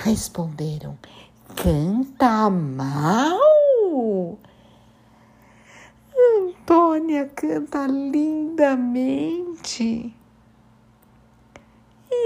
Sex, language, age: female, Portuguese, 60-79